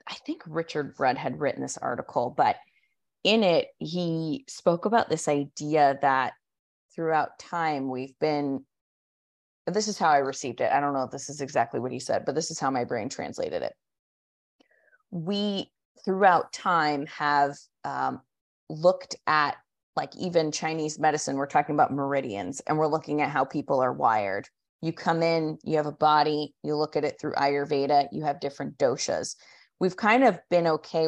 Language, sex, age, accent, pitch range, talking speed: English, female, 20-39, American, 140-170 Hz, 175 wpm